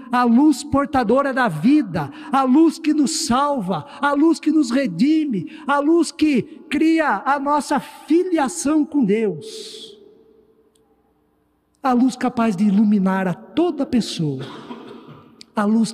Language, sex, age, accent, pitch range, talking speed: Portuguese, male, 50-69, Brazilian, 190-255 Hz, 130 wpm